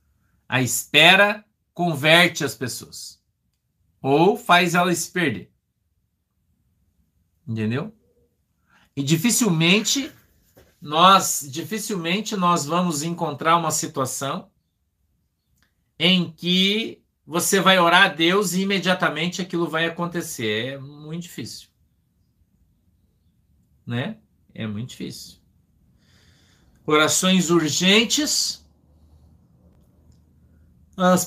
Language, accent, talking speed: Portuguese, Brazilian, 80 wpm